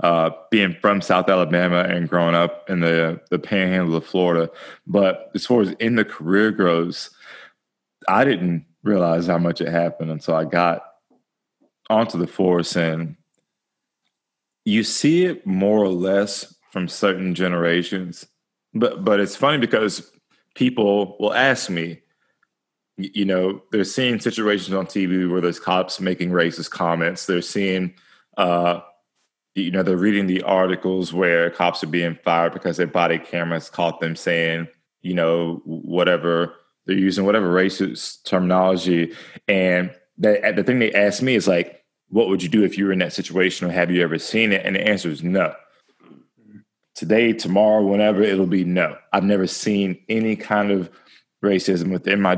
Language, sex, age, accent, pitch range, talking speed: English, male, 30-49, American, 85-100 Hz, 160 wpm